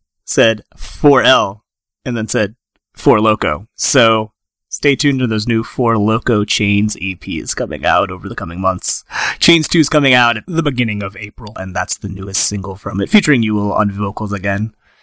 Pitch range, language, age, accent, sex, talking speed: 105-135 Hz, English, 30-49, American, male, 170 wpm